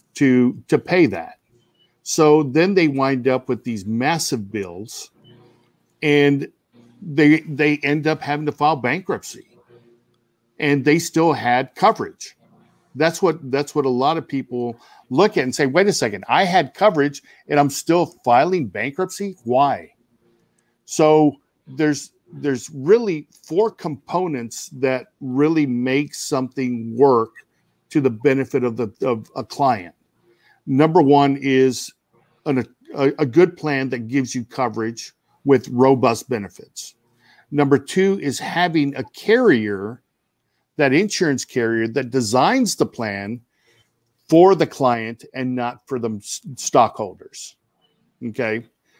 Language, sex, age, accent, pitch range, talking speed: English, male, 50-69, American, 125-155 Hz, 130 wpm